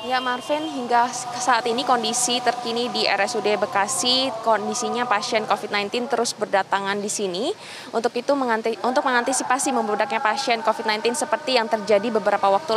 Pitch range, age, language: 200-245 Hz, 20-39, Indonesian